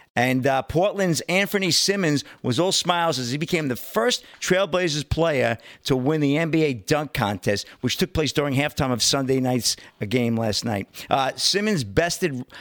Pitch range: 130-165 Hz